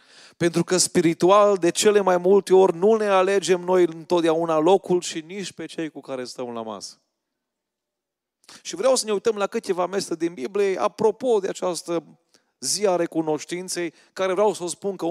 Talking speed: 180 wpm